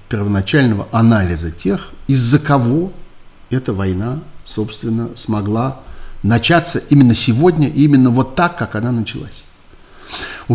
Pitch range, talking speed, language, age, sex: 110-150 Hz, 110 wpm, Russian, 50-69, male